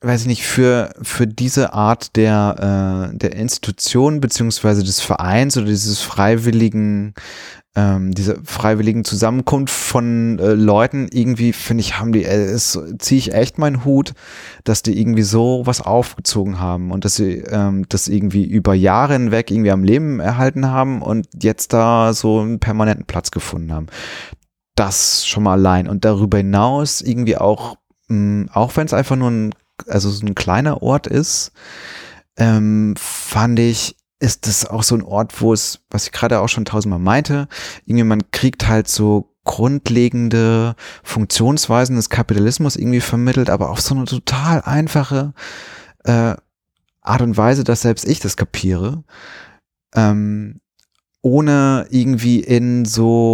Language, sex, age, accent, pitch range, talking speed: German, male, 30-49, German, 105-125 Hz, 150 wpm